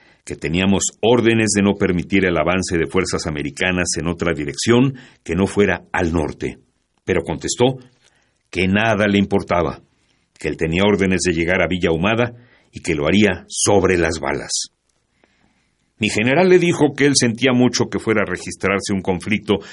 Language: Spanish